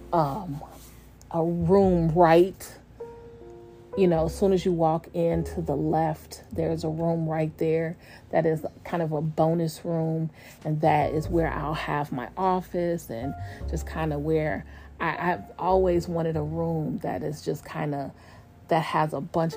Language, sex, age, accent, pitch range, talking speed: English, female, 30-49, American, 145-165 Hz, 165 wpm